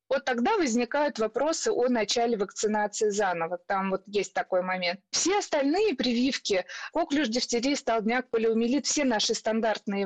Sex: female